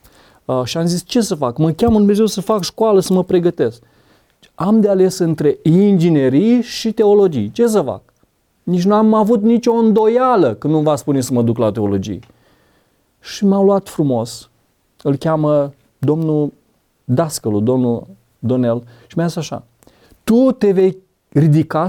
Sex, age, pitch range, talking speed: male, 30-49, 135-195 Hz, 160 wpm